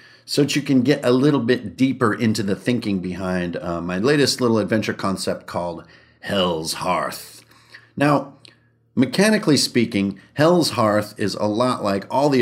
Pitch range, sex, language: 95-130 Hz, male, English